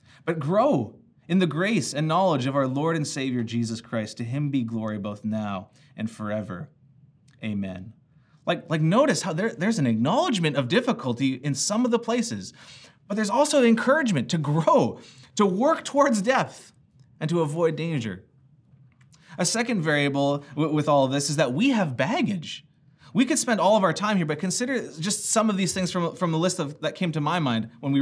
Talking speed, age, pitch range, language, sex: 195 wpm, 30-49, 125-175 Hz, English, male